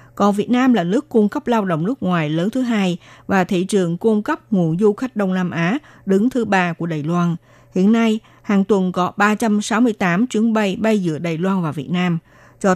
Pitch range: 165-225 Hz